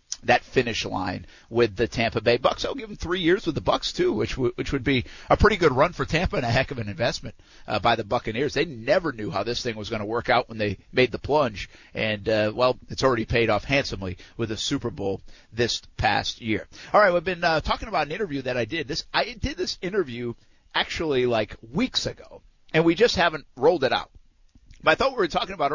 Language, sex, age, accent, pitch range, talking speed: English, male, 50-69, American, 110-140 Hz, 240 wpm